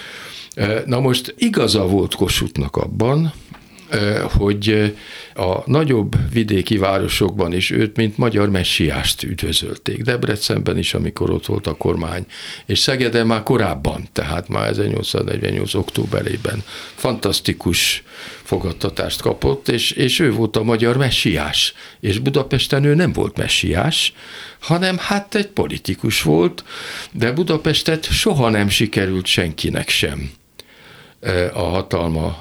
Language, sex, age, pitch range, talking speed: Hungarian, male, 60-79, 95-125 Hz, 115 wpm